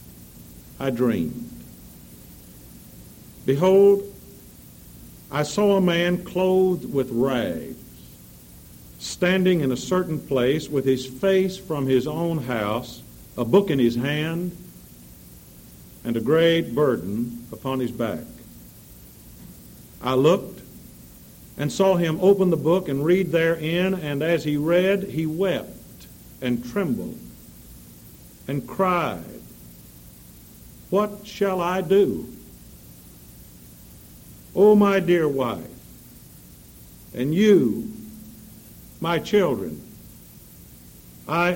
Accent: American